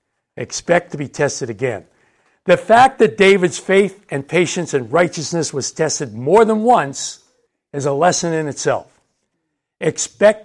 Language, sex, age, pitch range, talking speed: English, male, 60-79, 130-170 Hz, 145 wpm